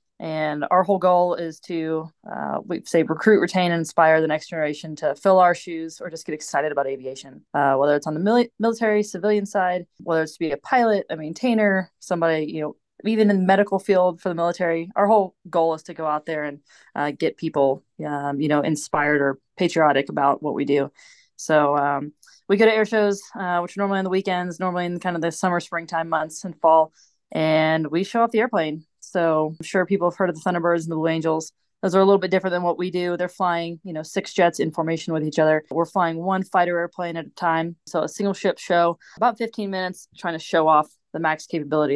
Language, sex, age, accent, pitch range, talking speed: English, female, 20-39, American, 155-190 Hz, 230 wpm